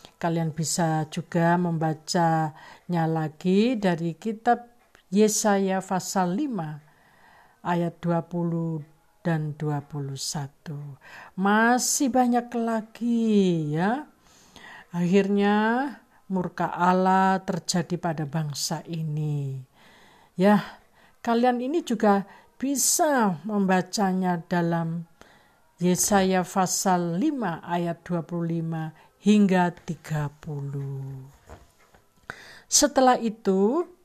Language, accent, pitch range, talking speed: Indonesian, native, 160-205 Hz, 70 wpm